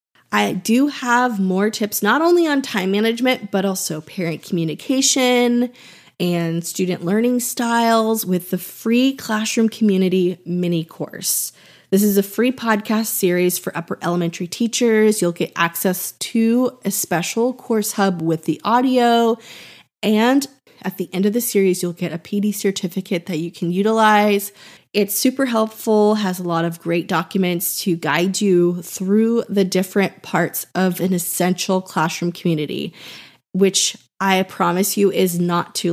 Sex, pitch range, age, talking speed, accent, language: female, 175-225 Hz, 20-39, 150 wpm, American, English